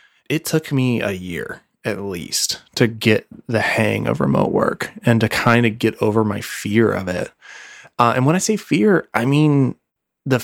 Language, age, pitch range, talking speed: English, 20-39, 110-135 Hz, 190 wpm